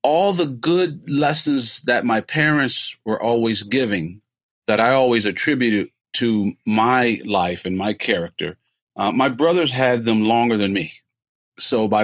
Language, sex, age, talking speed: English, male, 40-59, 150 wpm